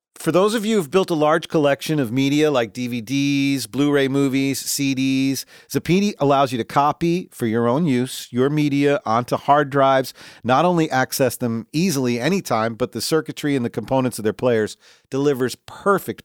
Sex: male